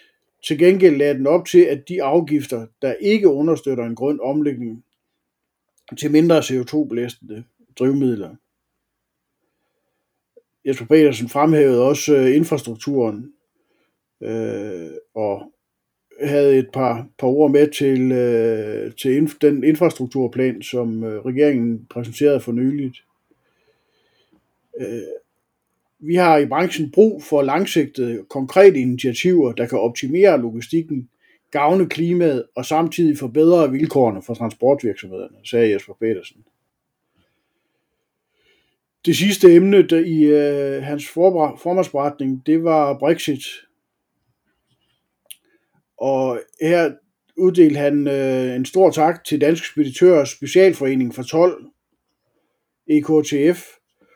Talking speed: 105 wpm